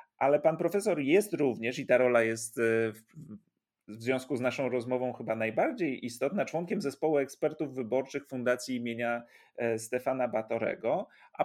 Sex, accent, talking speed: male, native, 140 wpm